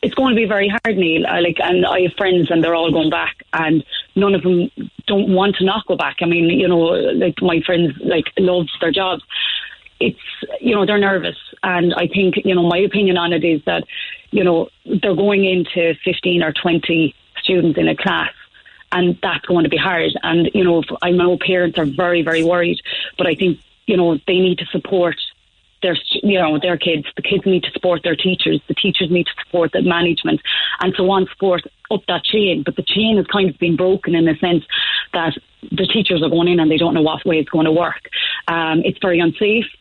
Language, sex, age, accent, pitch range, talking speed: English, female, 30-49, Irish, 165-190 Hz, 225 wpm